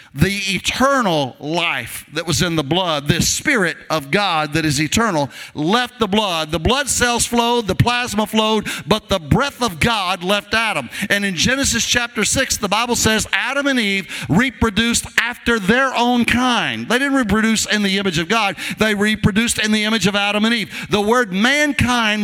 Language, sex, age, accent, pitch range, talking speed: English, male, 50-69, American, 170-230 Hz, 185 wpm